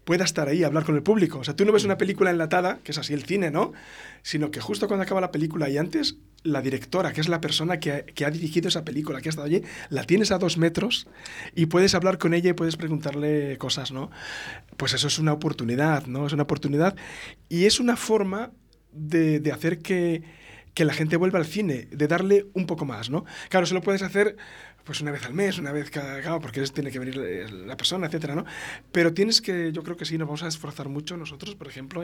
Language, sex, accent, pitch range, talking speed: Spanish, male, Spanish, 145-185 Hz, 240 wpm